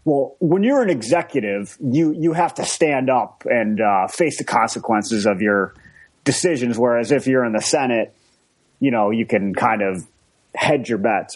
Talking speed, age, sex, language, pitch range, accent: 180 wpm, 30-49, male, English, 115-160 Hz, American